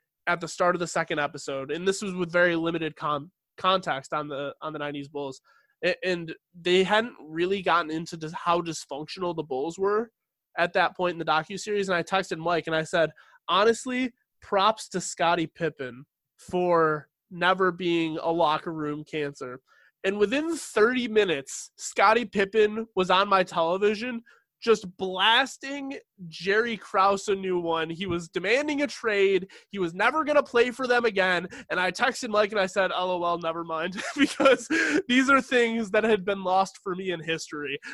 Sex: male